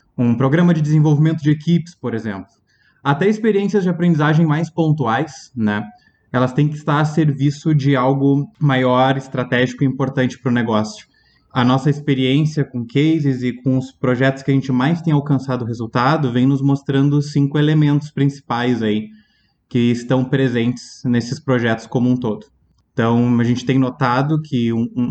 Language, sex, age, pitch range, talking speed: Portuguese, male, 20-39, 120-145 Hz, 165 wpm